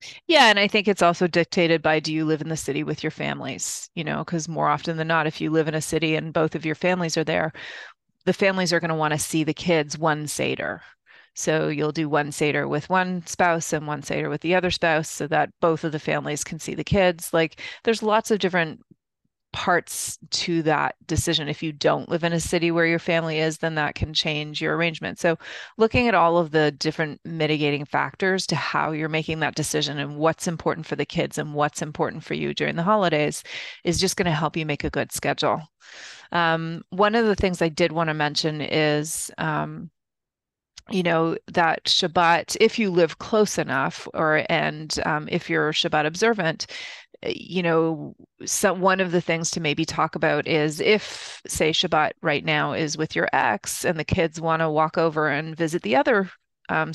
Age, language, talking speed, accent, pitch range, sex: 30-49, English, 210 wpm, American, 155-180 Hz, female